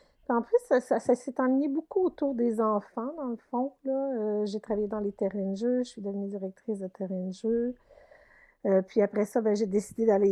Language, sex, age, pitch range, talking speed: French, female, 50-69, 210-250 Hz, 215 wpm